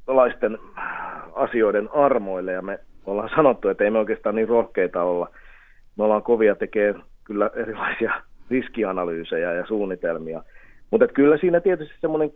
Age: 30-49